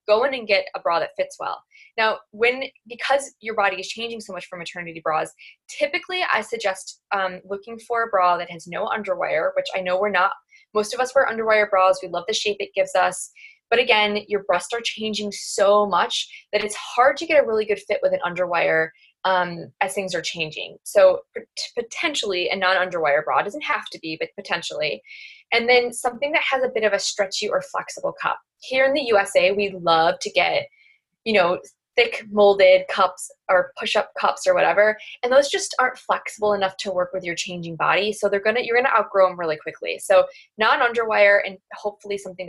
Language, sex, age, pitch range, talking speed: English, female, 20-39, 190-275 Hz, 210 wpm